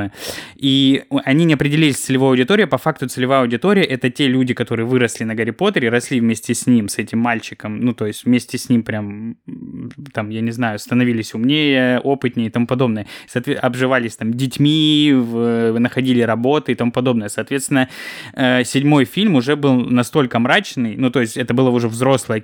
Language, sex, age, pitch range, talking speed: Russian, male, 20-39, 120-140 Hz, 175 wpm